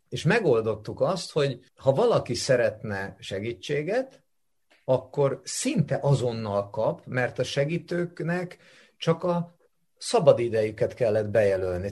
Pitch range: 110-165 Hz